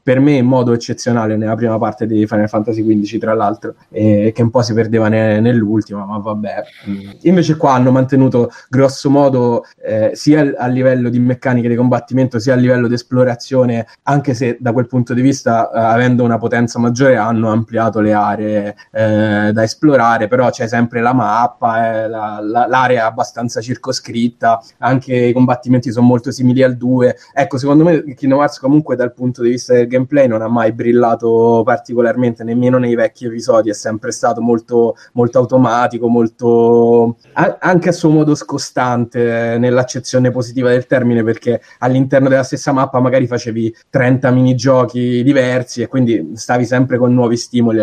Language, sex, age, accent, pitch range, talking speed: Italian, male, 20-39, native, 115-125 Hz, 175 wpm